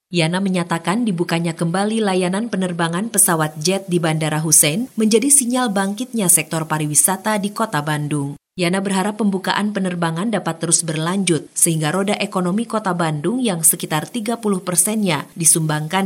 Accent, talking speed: native, 135 wpm